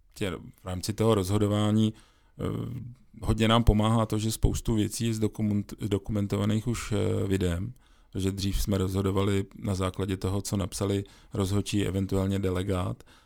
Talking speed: 120 wpm